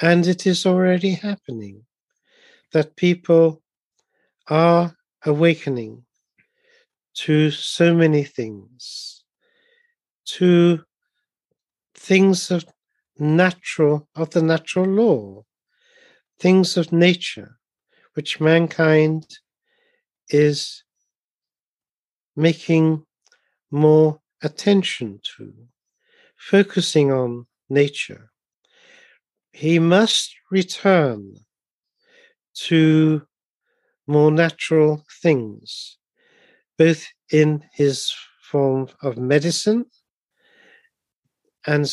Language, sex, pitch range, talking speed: English, male, 145-190 Hz, 70 wpm